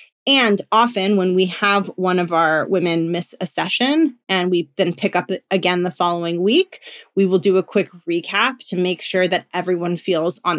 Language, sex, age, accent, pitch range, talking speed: English, female, 20-39, American, 180-230 Hz, 195 wpm